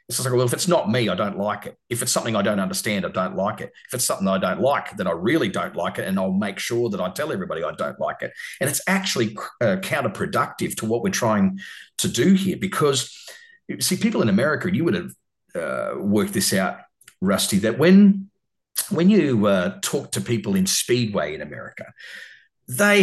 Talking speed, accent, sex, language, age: 225 wpm, Australian, male, English, 40-59